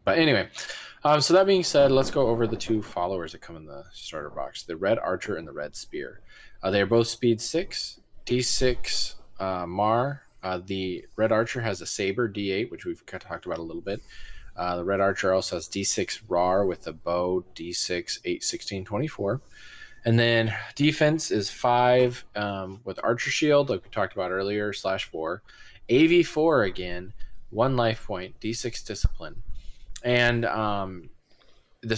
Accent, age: American, 20-39